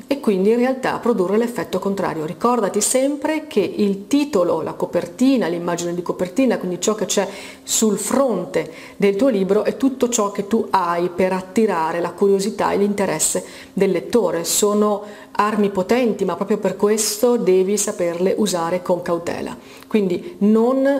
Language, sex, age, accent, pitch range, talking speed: Italian, female, 40-59, native, 185-240 Hz, 155 wpm